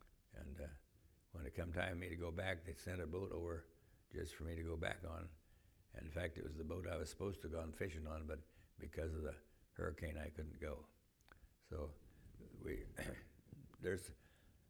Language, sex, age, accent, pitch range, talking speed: English, male, 60-79, American, 80-95 Hz, 200 wpm